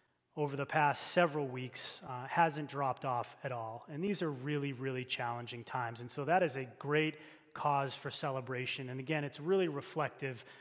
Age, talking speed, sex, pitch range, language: 30-49, 180 wpm, male, 130-170 Hz, English